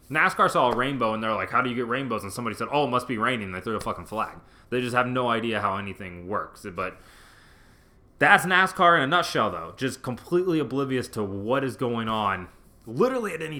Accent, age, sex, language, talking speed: American, 20-39, male, English, 225 wpm